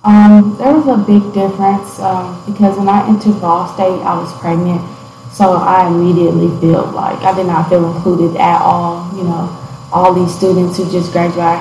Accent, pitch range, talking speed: American, 175-195 Hz, 185 wpm